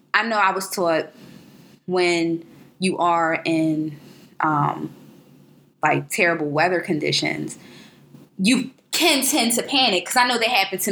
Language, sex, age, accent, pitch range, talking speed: English, female, 20-39, American, 160-195 Hz, 135 wpm